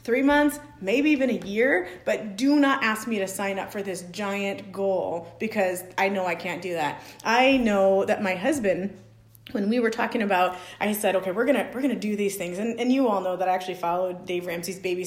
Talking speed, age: 230 wpm, 30-49